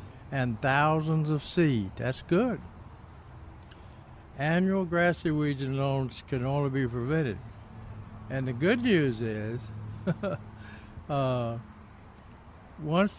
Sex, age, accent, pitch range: male, 60-79, American, 110-165 Hz